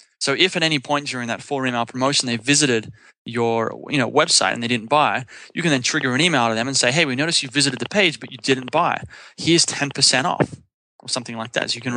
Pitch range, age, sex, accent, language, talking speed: 120-145 Hz, 20-39, male, Australian, English, 255 wpm